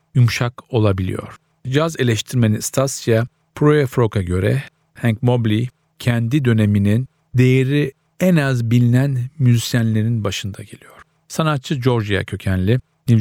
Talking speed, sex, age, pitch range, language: 100 wpm, male, 50-69, 110-135 Hz, Turkish